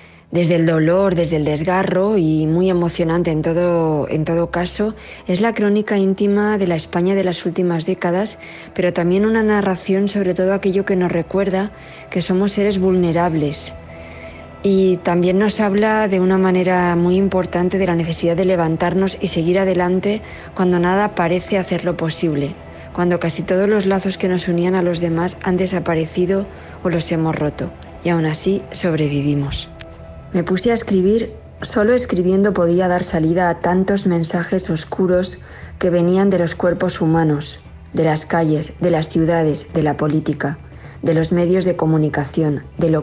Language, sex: Spanish, female